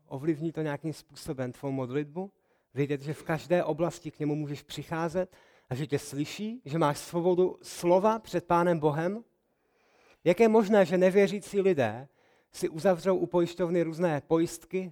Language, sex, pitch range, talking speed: Czech, male, 135-170 Hz, 155 wpm